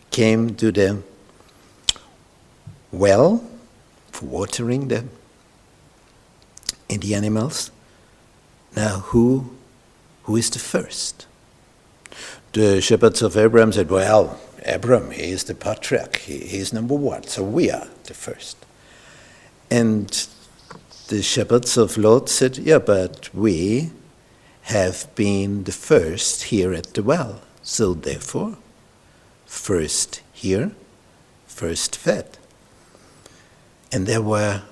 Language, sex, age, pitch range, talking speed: English, male, 60-79, 100-120 Hz, 110 wpm